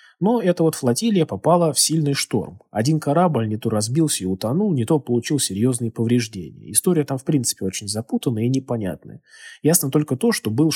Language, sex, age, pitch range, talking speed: Russian, male, 20-39, 115-155 Hz, 185 wpm